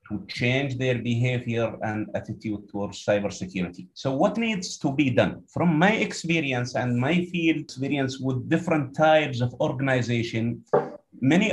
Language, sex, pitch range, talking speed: English, male, 120-155 Hz, 135 wpm